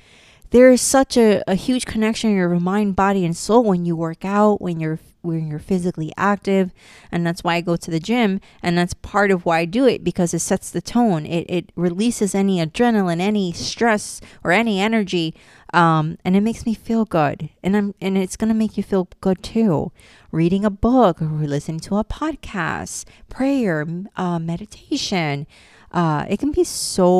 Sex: female